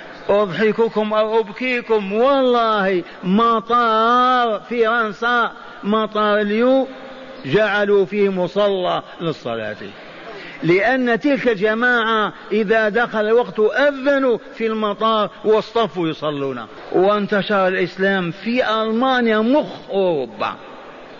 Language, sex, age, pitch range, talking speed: Arabic, male, 50-69, 180-230 Hz, 90 wpm